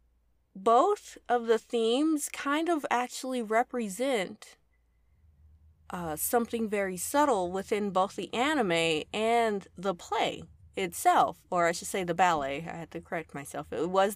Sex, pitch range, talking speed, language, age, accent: female, 170-255 Hz, 140 wpm, English, 20-39, American